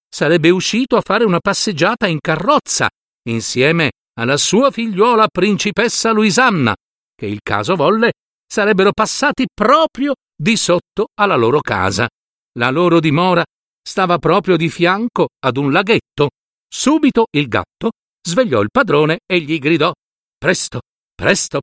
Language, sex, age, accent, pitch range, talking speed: Italian, male, 50-69, native, 160-235 Hz, 130 wpm